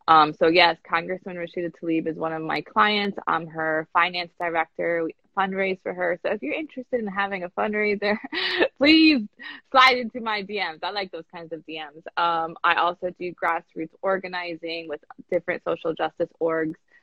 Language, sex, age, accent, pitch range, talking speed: English, female, 20-39, American, 155-180 Hz, 175 wpm